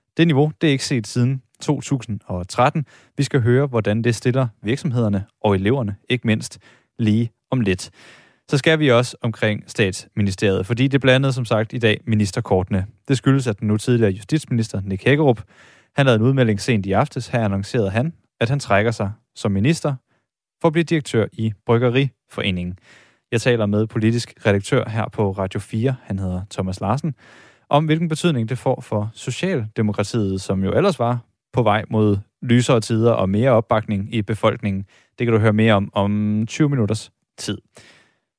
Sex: male